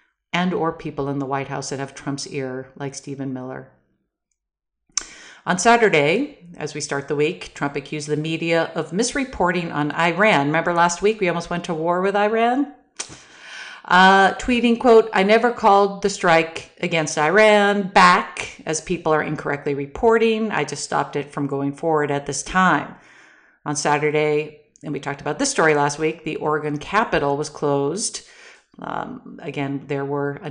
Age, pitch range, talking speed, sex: 50-69, 145-200 Hz, 165 wpm, female